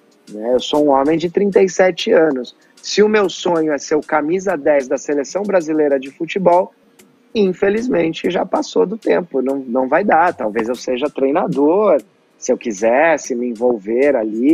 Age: 30-49